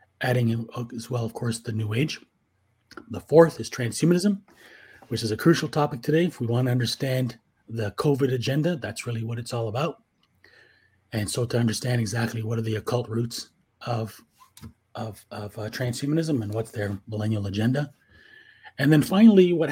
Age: 30-49